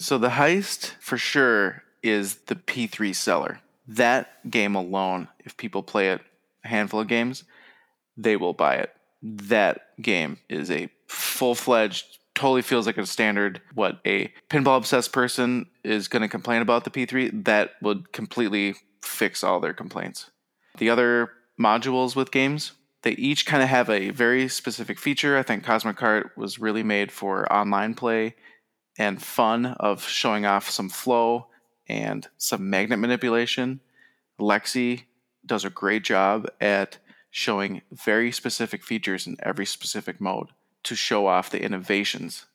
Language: English